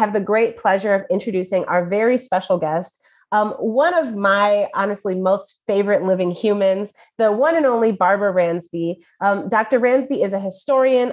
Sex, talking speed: female, 165 wpm